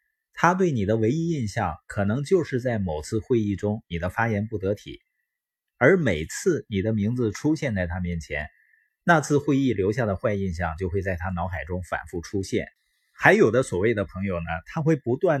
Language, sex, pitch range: Chinese, male, 95-135 Hz